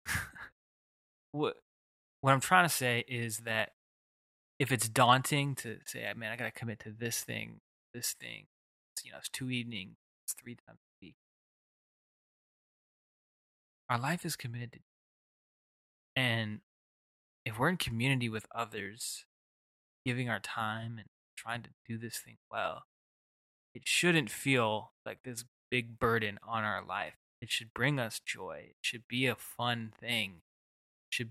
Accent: American